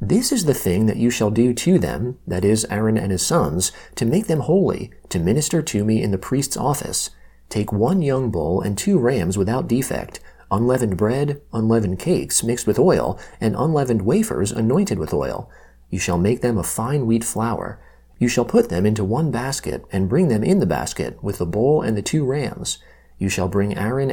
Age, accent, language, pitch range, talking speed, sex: 30-49, American, English, 95-125 Hz, 205 wpm, male